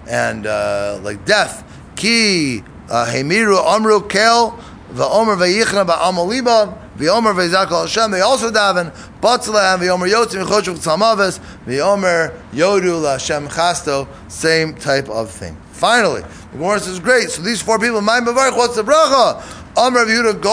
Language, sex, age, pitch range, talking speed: English, male, 30-49, 150-215 Hz, 155 wpm